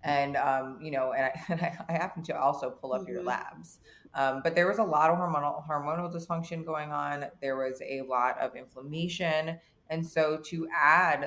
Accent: American